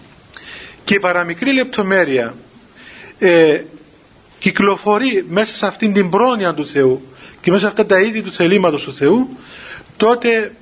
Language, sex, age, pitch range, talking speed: Greek, male, 40-59, 175-230 Hz, 135 wpm